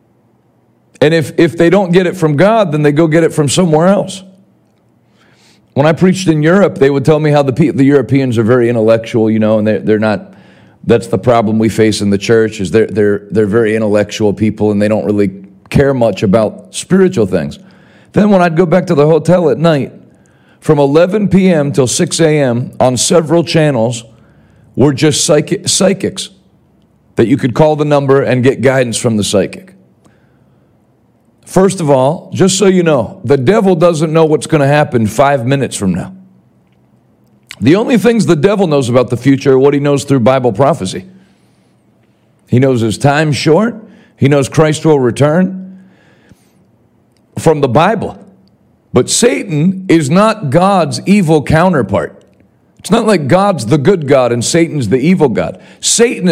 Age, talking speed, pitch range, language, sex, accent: 40-59, 175 wpm, 115-175 Hz, English, male, American